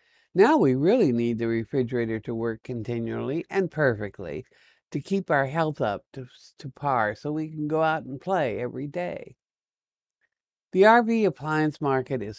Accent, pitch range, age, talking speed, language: American, 120-165 Hz, 60-79, 160 wpm, English